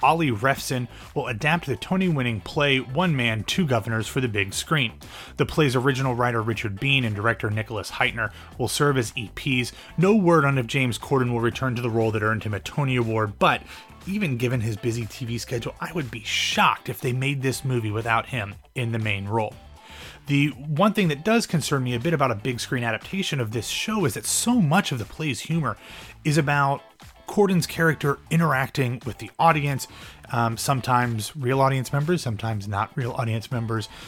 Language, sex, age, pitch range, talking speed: English, male, 30-49, 115-145 Hz, 195 wpm